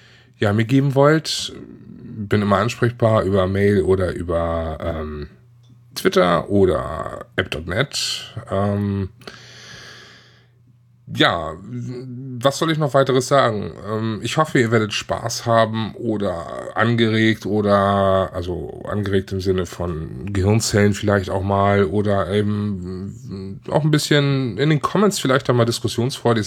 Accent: German